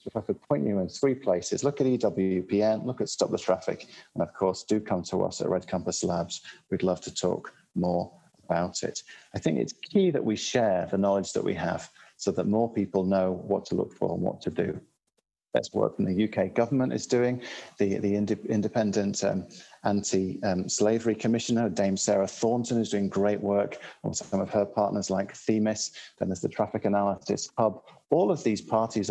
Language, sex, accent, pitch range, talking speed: English, male, British, 95-115 Hz, 200 wpm